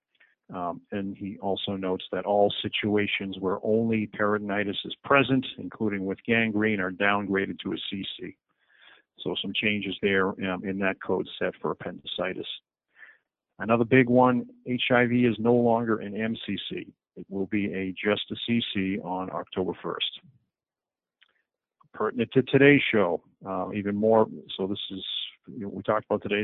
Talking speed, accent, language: 150 wpm, American, English